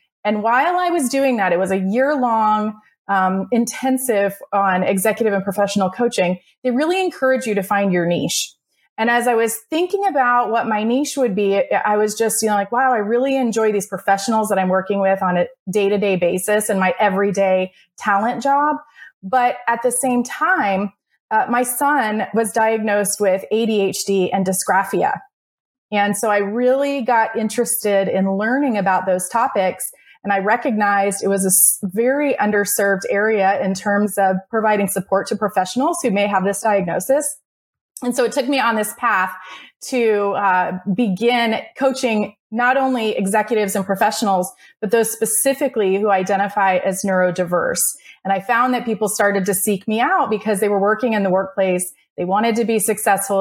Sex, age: female, 30-49